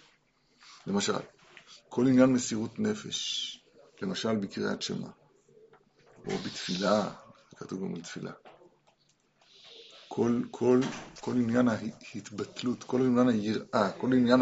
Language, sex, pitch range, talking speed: Hebrew, male, 115-190 Hz, 100 wpm